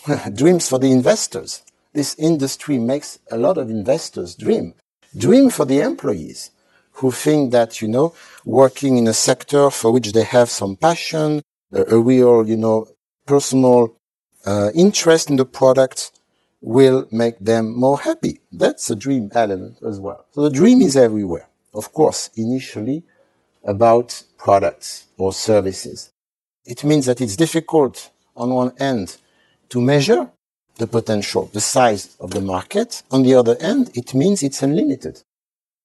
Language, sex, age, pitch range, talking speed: English, male, 60-79, 115-155 Hz, 150 wpm